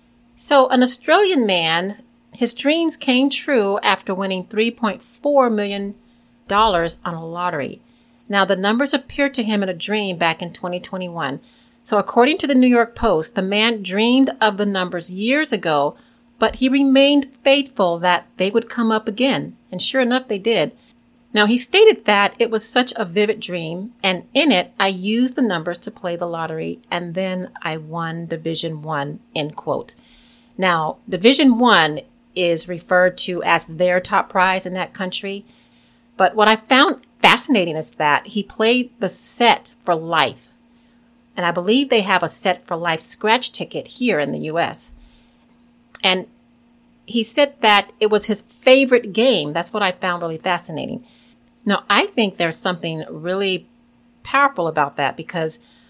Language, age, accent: English, 40-59, American